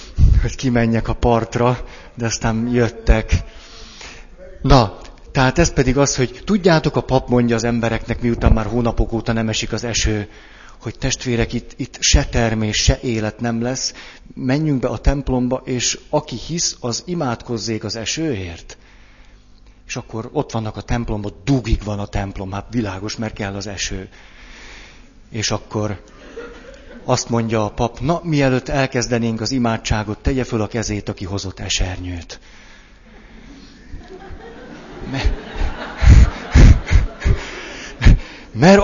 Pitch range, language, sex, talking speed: 105-130 Hz, Hungarian, male, 130 wpm